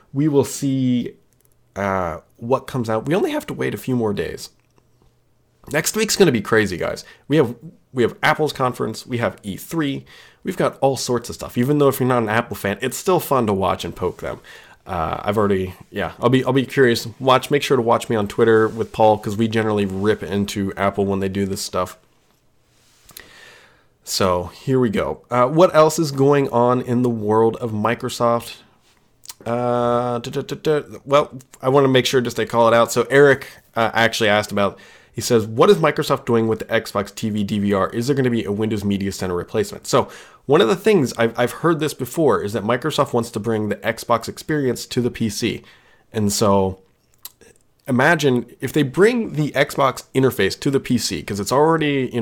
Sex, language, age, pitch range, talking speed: male, English, 30-49, 105-135 Hz, 205 wpm